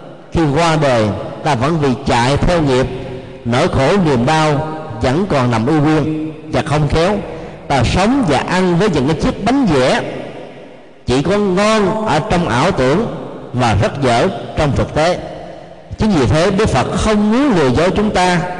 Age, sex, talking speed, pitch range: 50-69, male, 175 wpm, 130-180 Hz